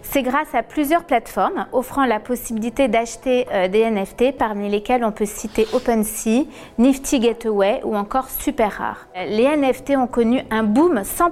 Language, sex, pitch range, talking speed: French, female, 215-265 Hz, 155 wpm